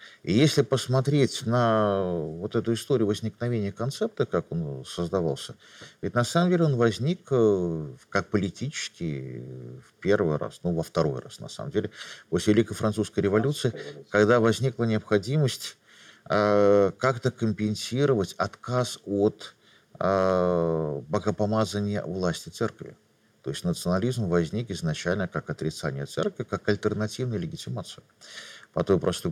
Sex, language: male, Russian